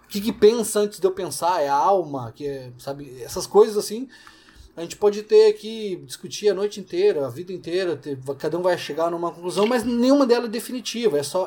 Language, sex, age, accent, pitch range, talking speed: Portuguese, male, 20-39, Brazilian, 160-220 Hz, 225 wpm